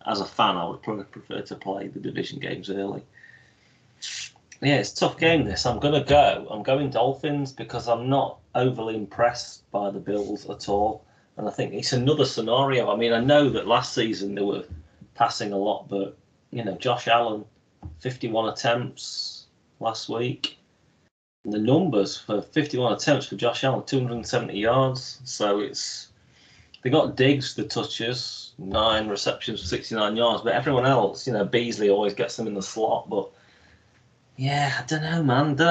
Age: 30-49